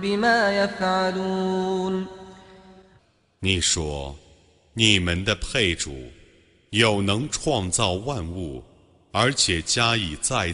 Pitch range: 85-120 Hz